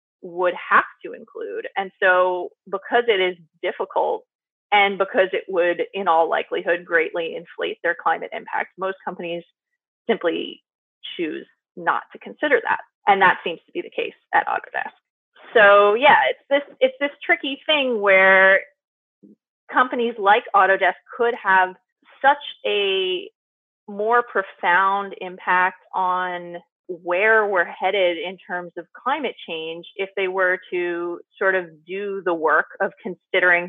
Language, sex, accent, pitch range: English, female, American, 175-235 Hz